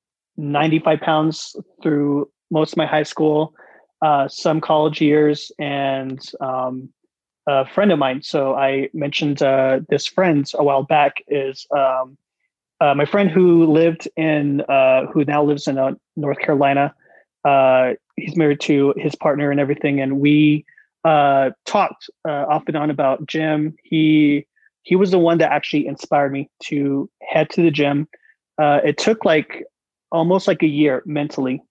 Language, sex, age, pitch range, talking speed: English, male, 30-49, 140-160 Hz, 155 wpm